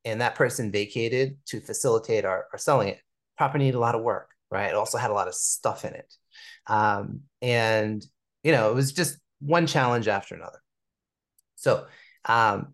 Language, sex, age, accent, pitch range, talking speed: English, male, 30-49, American, 115-145 Hz, 185 wpm